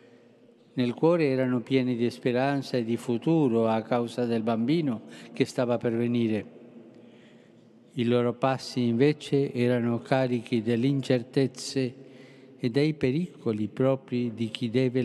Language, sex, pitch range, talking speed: Italian, male, 120-135 Hz, 125 wpm